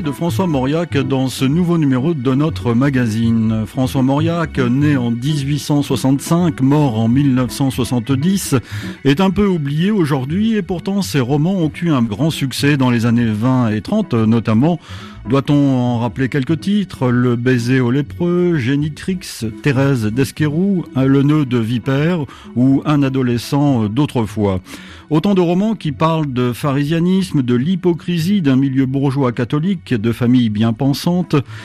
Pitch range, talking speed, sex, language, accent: 125-160 Hz, 140 wpm, male, French, French